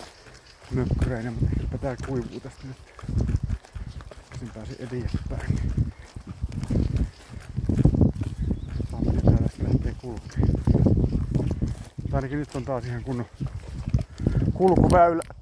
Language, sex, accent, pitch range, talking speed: Finnish, male, native, 115-135 Hz, 80 wpm